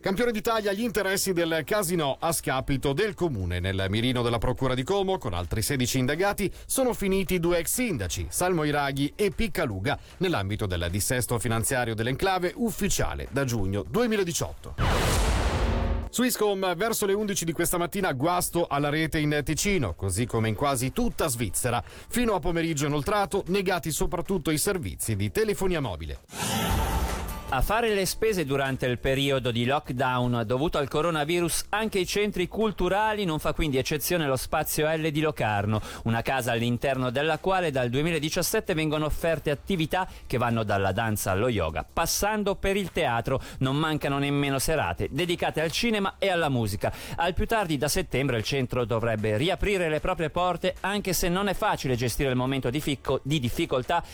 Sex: male